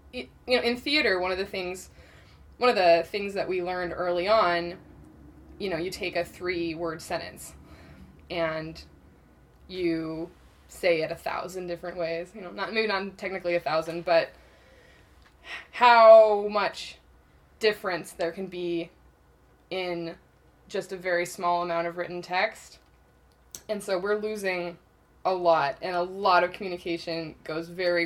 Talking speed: 150 wpm